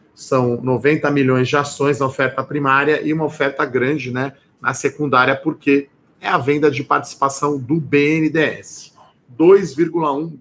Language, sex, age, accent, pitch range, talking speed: Portuguese, male, 40-59, Brazilian, 120-145 Hz, 140 wpm